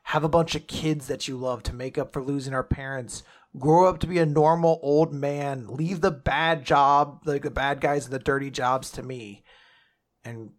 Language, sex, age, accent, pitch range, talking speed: English, male, 30-49, American, 130-165 Hz, 215 wpm